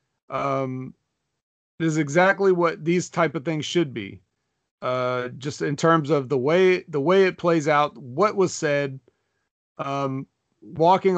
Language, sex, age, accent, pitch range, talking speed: English, male, 40-59, American, 130-170 Hz, 150 wpm